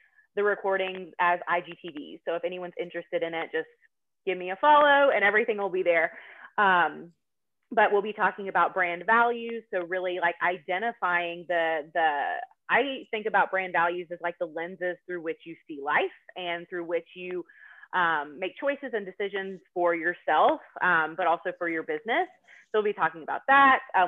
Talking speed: 180 wpm